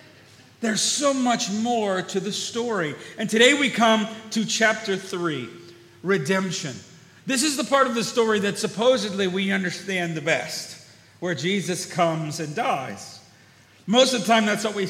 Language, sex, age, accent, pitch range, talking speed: English, male, 40-59, American, 150-220 Hz, 160 wpm